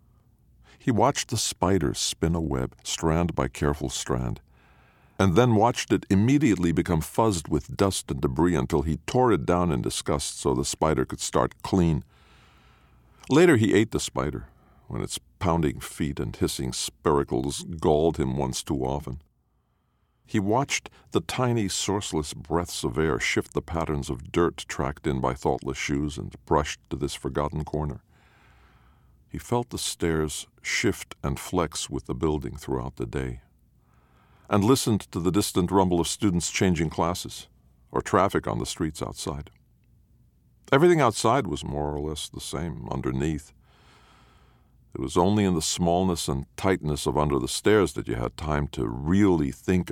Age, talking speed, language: 50-69, 160 wpm, English